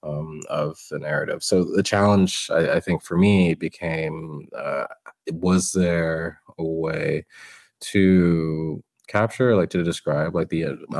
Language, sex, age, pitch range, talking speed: English, male, 20-39, 80-105 Hz, 140 wpm